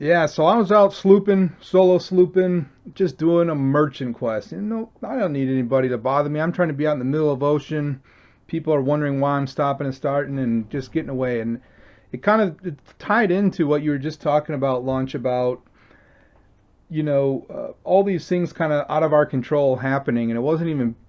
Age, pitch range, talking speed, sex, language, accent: 30-49, 125-160 Hz, 215 wpm, male, English, American